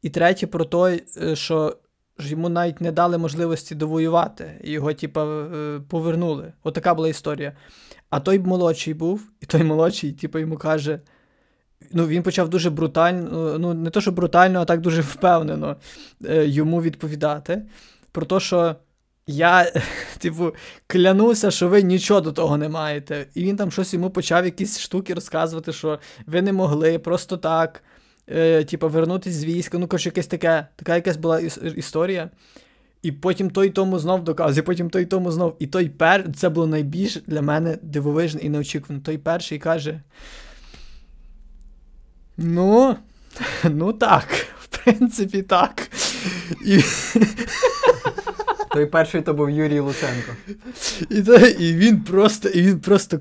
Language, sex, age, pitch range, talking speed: Ukrainian, male, 20-39, 155-185 Hz, 145 wpm